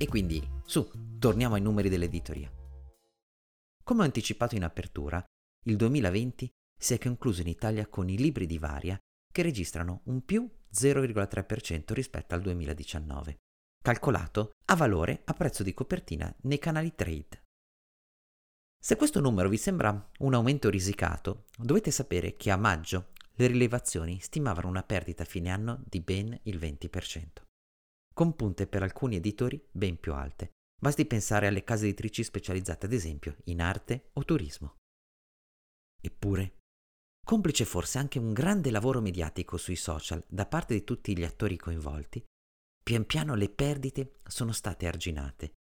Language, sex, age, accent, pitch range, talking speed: Italian, male, 30-49, native, 85-120 Hz, 145 wpm